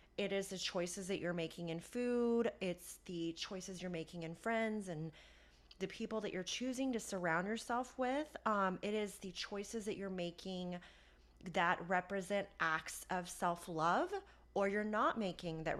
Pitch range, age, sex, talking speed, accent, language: 165-215 Hz, 30-49, female, 165 wpm, American, English